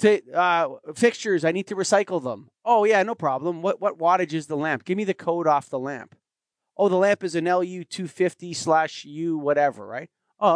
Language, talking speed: English, 205 wpm